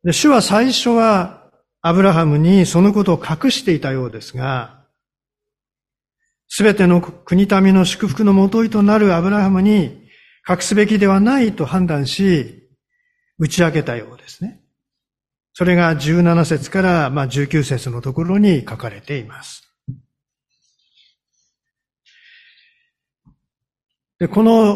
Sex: male